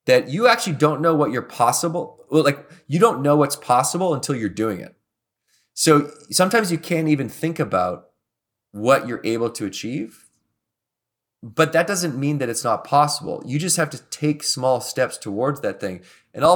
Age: 30-49